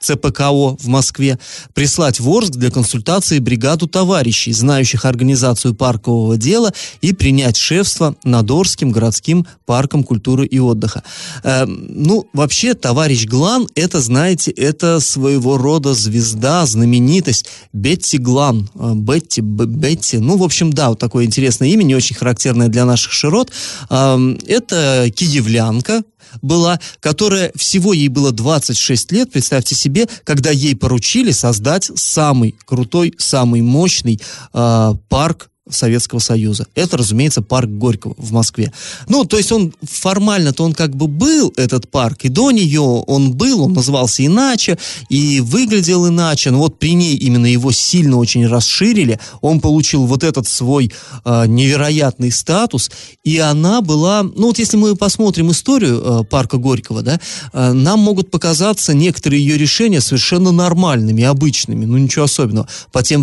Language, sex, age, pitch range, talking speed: Russian, male, 30-49, 125-170 Hz, 140 wpm